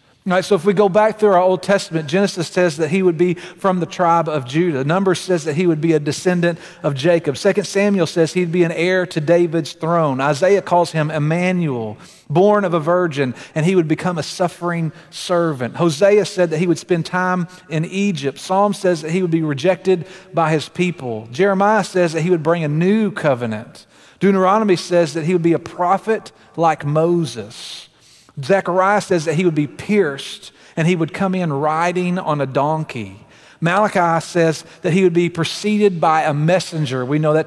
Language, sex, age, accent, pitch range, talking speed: English, male, 40-59, American, 155-190 Hz, 195 wpm